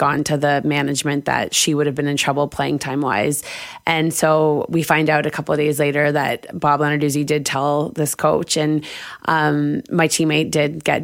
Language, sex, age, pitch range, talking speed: English, female, 20-39, 145-160 Hz, 200 wpm